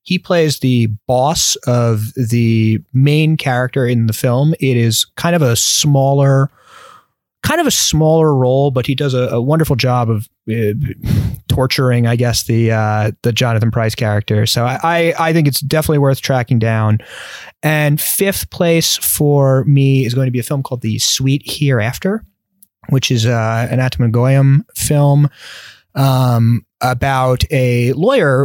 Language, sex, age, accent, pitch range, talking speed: English, male, 30-49, American, 115-140 Hz, 160 wpm